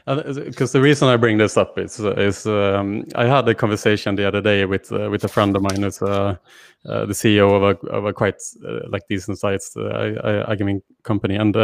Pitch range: 100-115 Hz